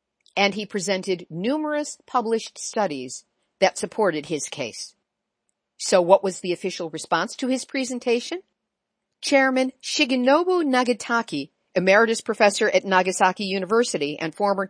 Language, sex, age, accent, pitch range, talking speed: English, female, 50-69, American, 185-260 Hz, 120 wpm